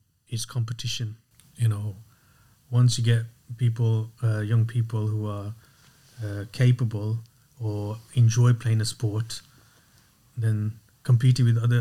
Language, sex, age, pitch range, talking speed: English, male, 30-49, 110-125 Hz, 120 wpm